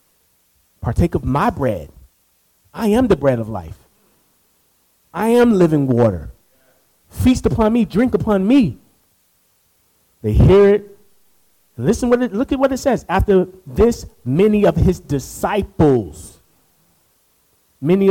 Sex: male